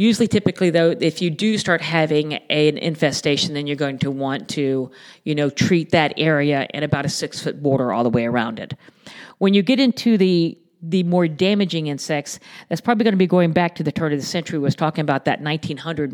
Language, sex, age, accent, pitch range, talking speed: English, female, 50-69, American, 150-180 Hz, 225 wpm